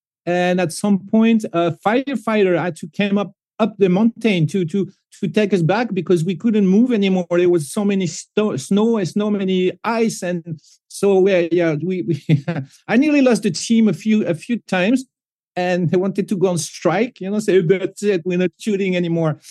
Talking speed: 200 wpm